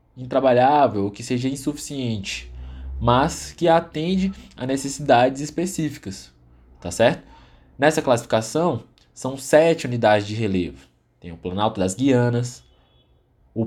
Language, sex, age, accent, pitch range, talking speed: Portuguese, male, 20-39, Brazilian, 100-140 Hz, 110 wpm